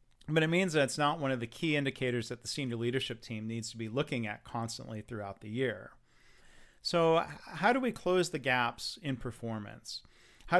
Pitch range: 115-145 Hz